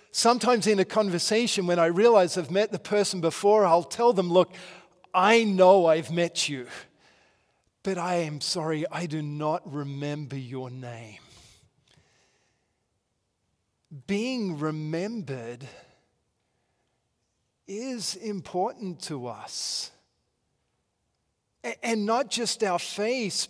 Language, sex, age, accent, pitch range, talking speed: English, male, 40-59, Australian, 140-200 Hz, 105 wpm